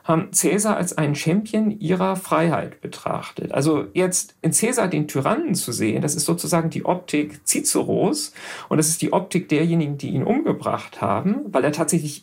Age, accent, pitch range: 50-69, German, 150-185 Hz